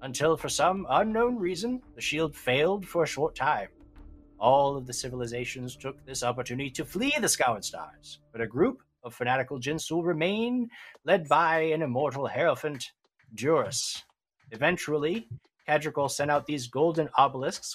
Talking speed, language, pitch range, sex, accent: 150 wpm, English, 125-175 Hz, male, American